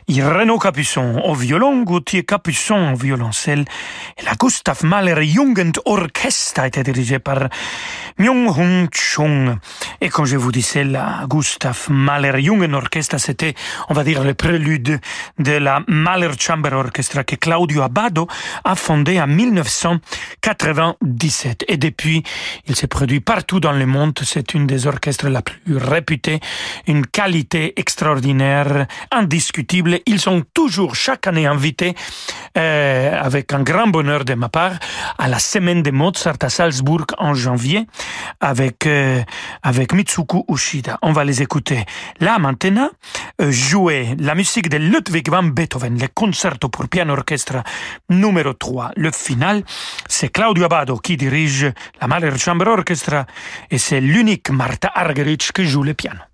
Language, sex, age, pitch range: French, male, 40-59, 140-180 Hz